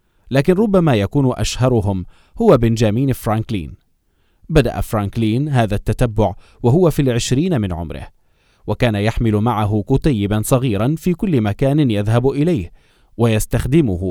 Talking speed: 115 wpm